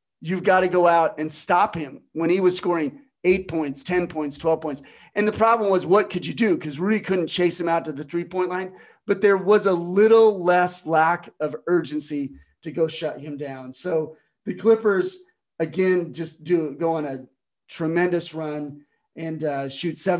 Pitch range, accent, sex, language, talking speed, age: 155-190 Hz, American, male, English, 190 wpm, 40-59